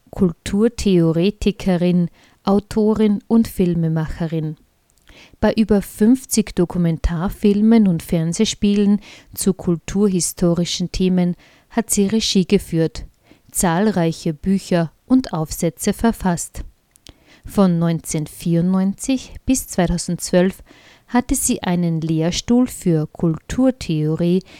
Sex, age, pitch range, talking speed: female, 50-69, 170-215 Hz, 80 wpm